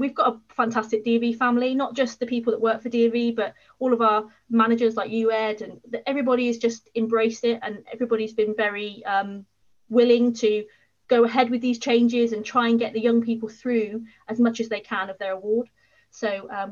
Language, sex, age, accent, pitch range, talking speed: English, female, 20-39, British, 215-245 Hz, 210 wpm